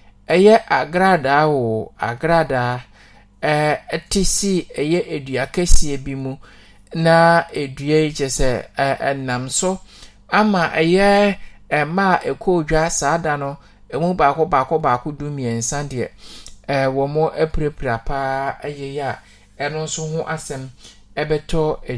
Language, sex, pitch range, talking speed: English, male, 130-165 Hz, 125 wpm